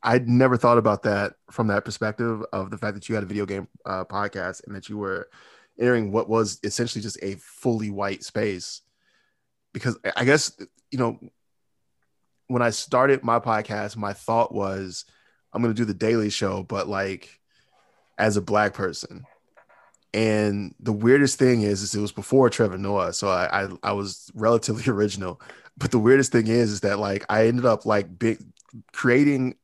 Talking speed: 180 wpm